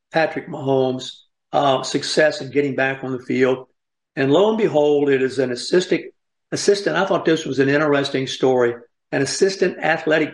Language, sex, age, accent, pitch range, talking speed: English, male, 50-69, American, 130-155 Hz, 170 wpm